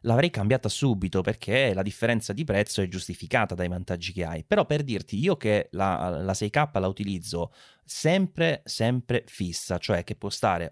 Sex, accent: male, Italian